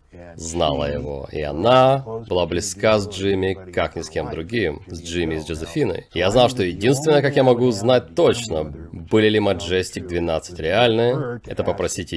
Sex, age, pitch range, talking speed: male, 30-49, 85-110 Hz, 175 wpm